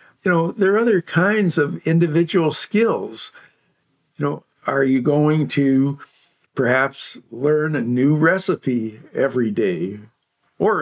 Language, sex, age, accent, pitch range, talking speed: English, male, 60-79, American, 130-160 Hz, 130 wpm